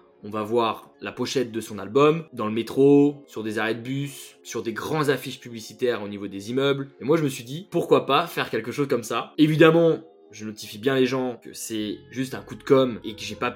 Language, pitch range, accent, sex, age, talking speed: French, 115-150 Hz, French, male, 20-39, 245 wpm